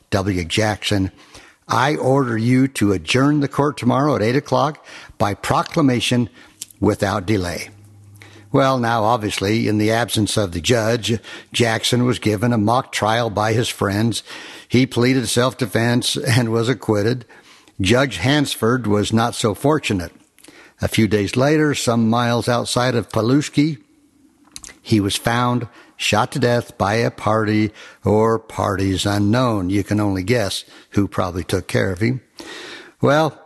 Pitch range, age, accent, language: 105-130 Hz, 60-79, American, English